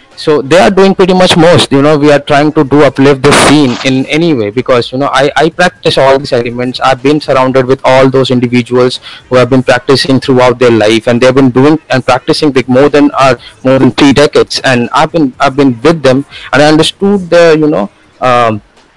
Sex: male